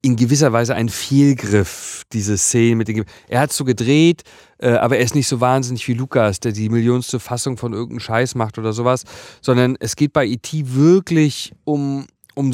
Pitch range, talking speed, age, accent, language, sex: 115-145 Hz, 195 wpm, 40-59, German, German, male